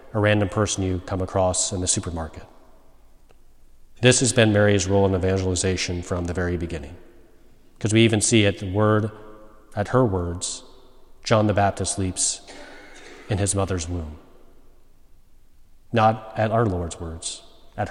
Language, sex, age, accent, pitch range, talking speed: English, male, 40-59, American, 90-105 Hz, 145 wpm